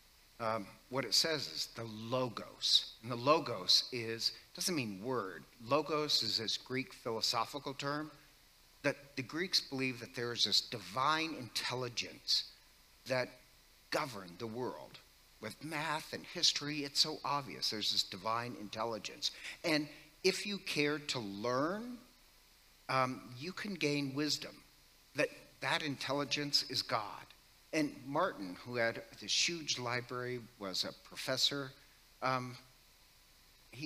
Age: 50-69